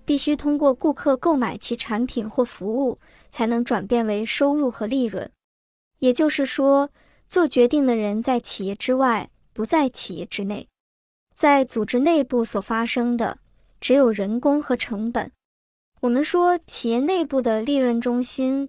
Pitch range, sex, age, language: 230-285 Hz, male, 20-39, Chinese